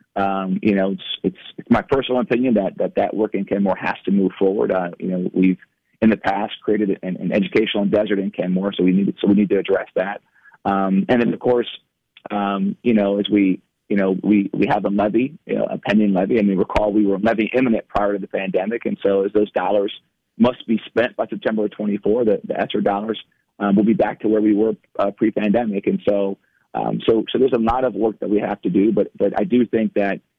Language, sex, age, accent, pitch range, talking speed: English, male, 30-49, American, 100-110 Hz, 240 wpm